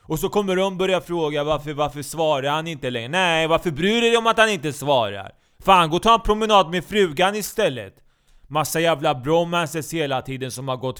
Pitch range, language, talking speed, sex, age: 140-175 Hz, Swedish, 215 wpm, male, 20-39